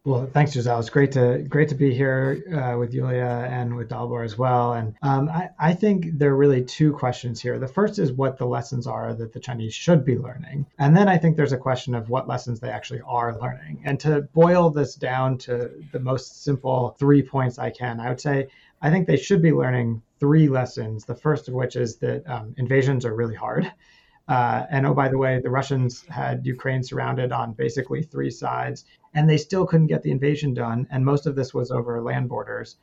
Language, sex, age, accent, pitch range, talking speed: English, male, 30-49, American, 120-140 Hz, 225 wpm